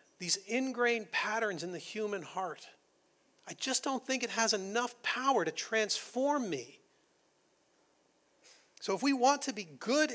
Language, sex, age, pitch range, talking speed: English, male, 40-59, 165-225 Hz, 150 wpm